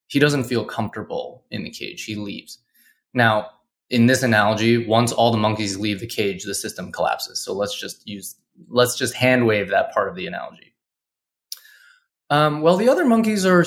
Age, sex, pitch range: 20-39, male, 110-155 Hz